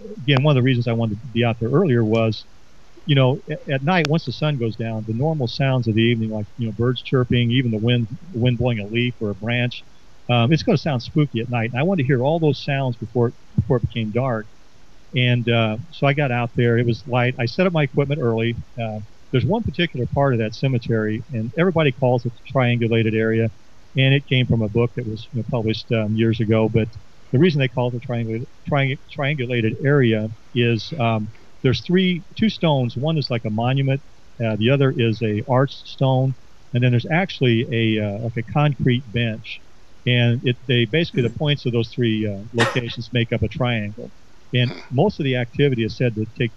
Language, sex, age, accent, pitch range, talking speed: English, male, 40-59, American, 115-135 Hz, 225 wpm